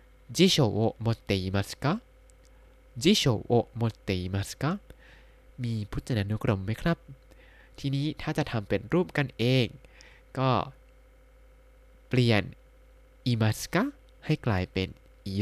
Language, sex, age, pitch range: Thai, male, 20-39, 110-140 Hz